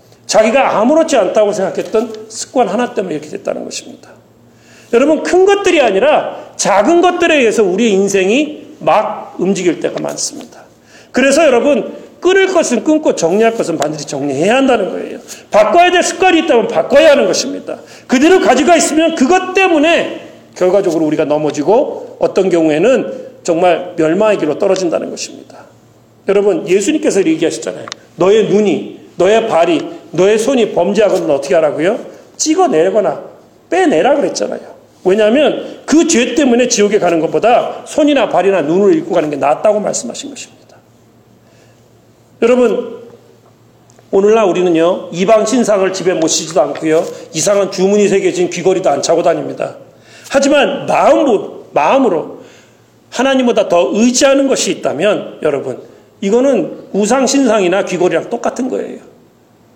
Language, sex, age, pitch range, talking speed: English, male, 40-59, 190-310 Hz, 115 wpm